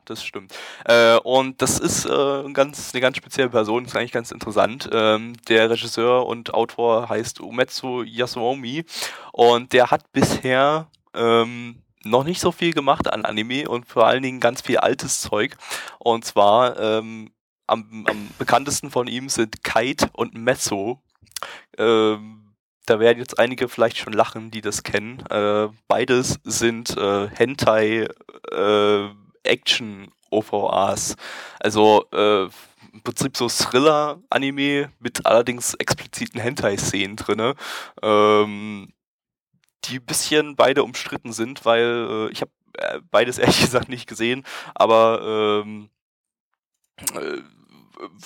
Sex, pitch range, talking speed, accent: male, 110-130 Hz, 130 wpm, German